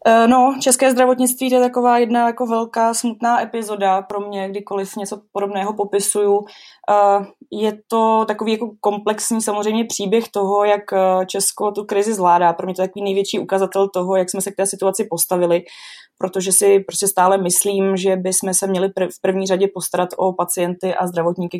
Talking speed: 170 wpm